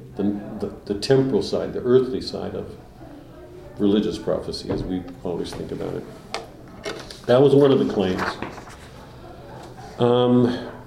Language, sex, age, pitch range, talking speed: English, male, 50-69, 100-120 Hz, 125 wpm